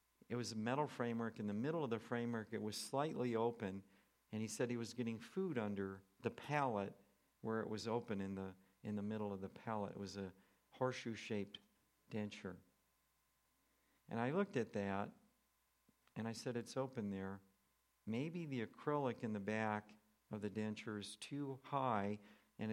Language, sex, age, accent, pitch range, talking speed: English, male, 50-69, American, 105-120 Hz, 175 wpm